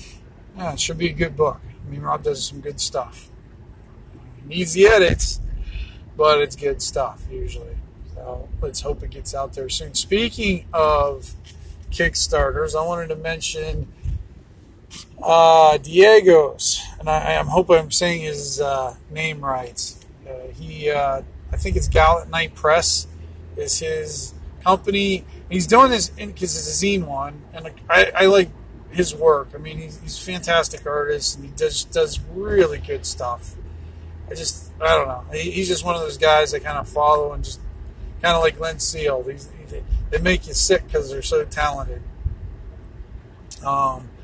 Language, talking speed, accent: English, 170 wpm, American